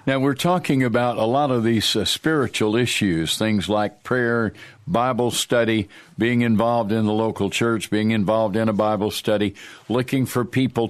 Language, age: English, 60-79